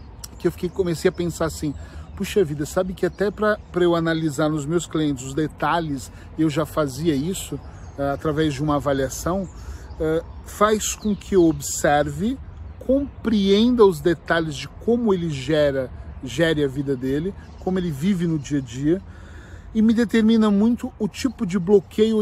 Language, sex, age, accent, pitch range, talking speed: Portuguese, male, 40-59, Brazilian, 145-195 Hz, 160 wpm